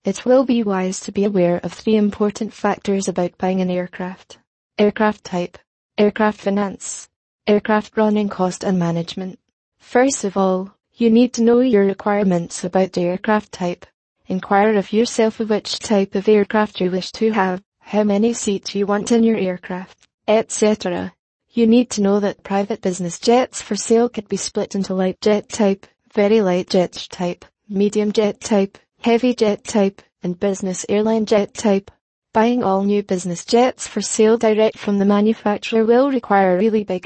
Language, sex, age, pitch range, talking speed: English, female, 20-39, 190-220 Hz, 170 wpm